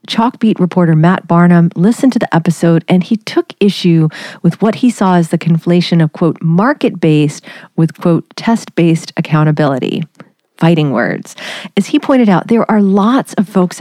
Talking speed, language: 160 wpm, English